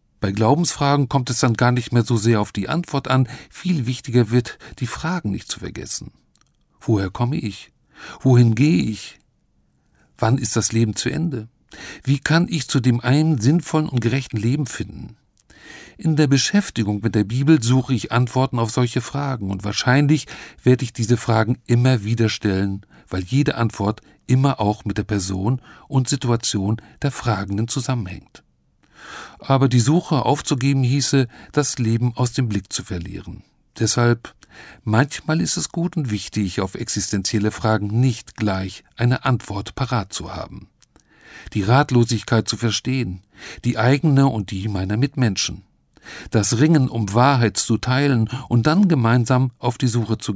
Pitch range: 105-135 Hz